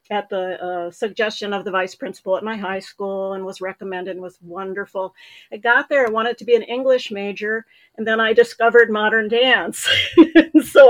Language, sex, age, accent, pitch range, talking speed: English, female, 50-69, American, 190-245 Hz, 195 wpm